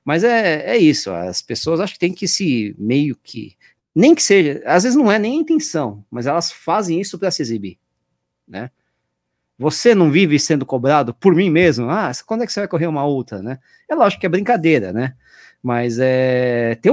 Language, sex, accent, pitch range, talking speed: Portuguese, male, Brazilian, 115-185 Hz, 205 wpm